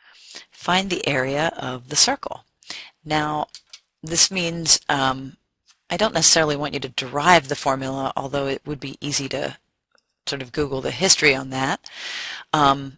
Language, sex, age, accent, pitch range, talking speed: English, female, 40-59, American, 135-170 Hz, 155 wpm